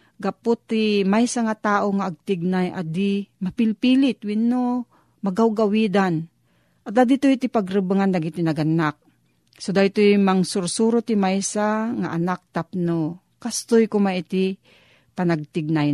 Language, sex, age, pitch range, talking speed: Filipino, female, 40-59, 175-220 Hz, 100 wpm